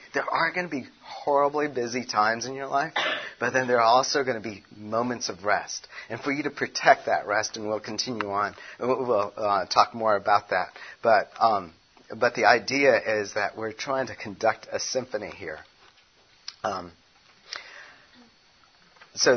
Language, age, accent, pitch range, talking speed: English, 40-59, American, 110-135 Hz, 170 wpm